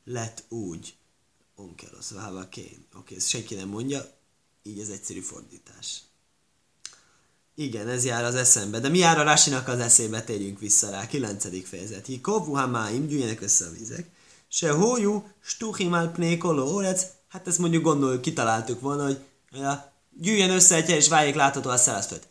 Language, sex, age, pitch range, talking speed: Hungarian, male, 30-49, 130-195 Hz, 150 wpm